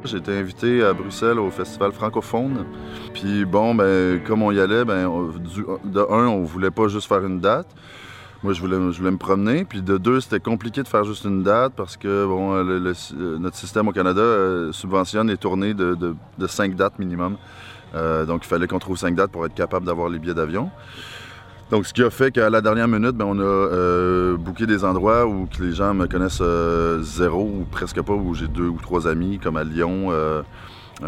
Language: French